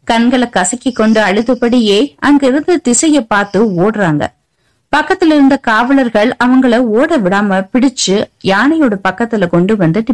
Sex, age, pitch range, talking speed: female, 20-39, 175-245 Hz, 110 wpm